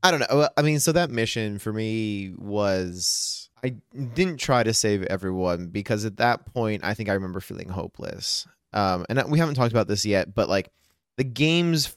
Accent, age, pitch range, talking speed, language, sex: American, 20-39, 100-130 Hz, 195 wpm, English, male